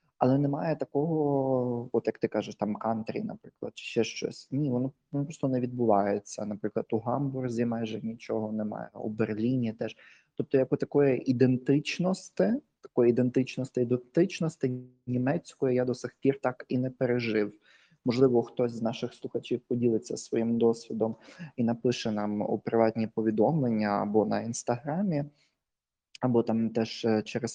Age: 20-39